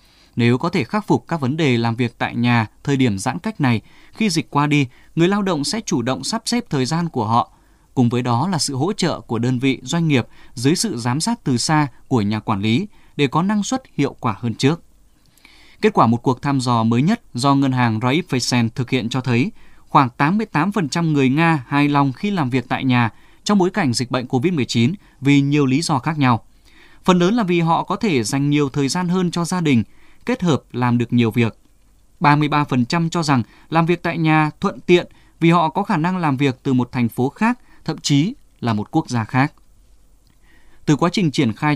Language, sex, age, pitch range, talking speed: Vietnamese, male, 20-39, 125-170 Hz, 225 wpm